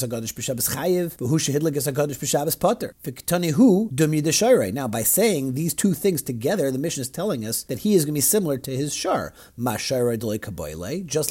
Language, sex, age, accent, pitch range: English, male, 40-59, American, 125-180 Hz